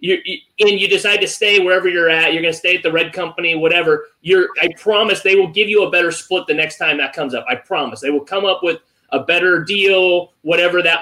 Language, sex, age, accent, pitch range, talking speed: English, male, 30-49, American, 175-275 Hz, 245 wpm